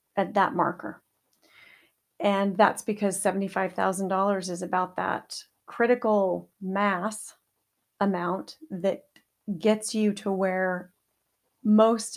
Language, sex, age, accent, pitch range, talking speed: English, female, 40-59, American, 180-215 Hz, 95 wpm